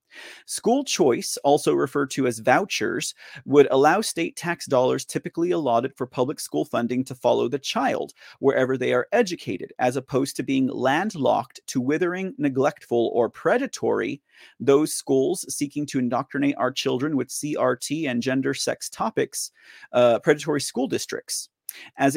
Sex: male